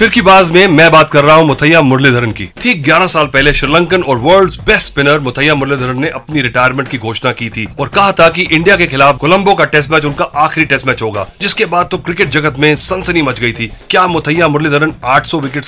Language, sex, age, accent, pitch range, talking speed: Hindi, male, 40-59, native, 130-170 Hz, 230 wpm